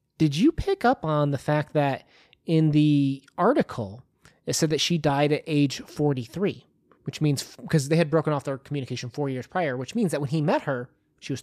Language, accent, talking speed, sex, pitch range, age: English, American, 210 wpm, male, 135-165 Hz, 20-39